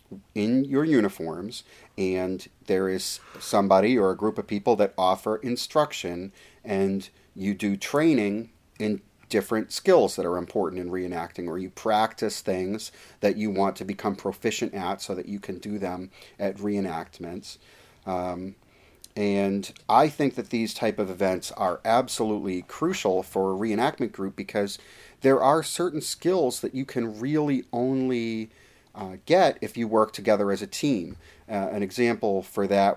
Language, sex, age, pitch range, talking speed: English, male, 30-49, 95-115 Hz, 155 wpm